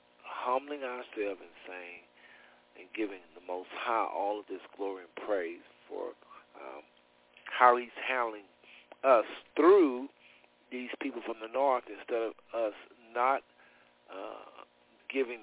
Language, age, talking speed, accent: English, 50-69, 130 wpm, American